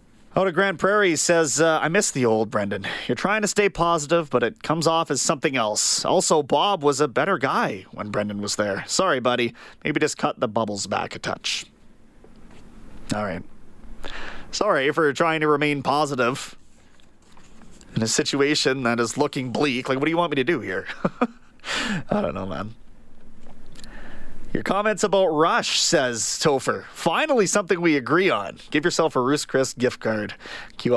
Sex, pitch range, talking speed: male, 135-175 Hz, 175 wpm